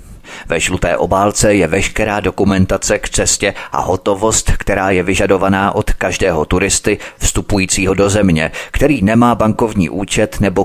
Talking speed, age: 135 wpm, 30-49